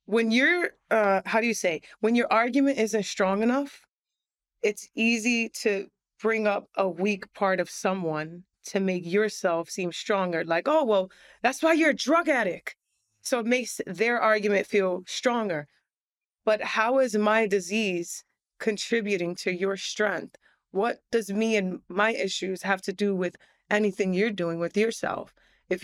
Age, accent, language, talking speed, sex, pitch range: 30-49, American, English, 160 wpm, female, 190-230 Hz